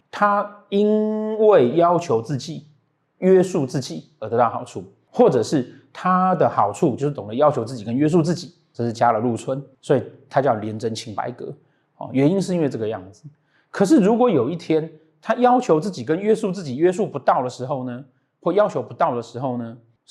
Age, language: 30-49, Chinese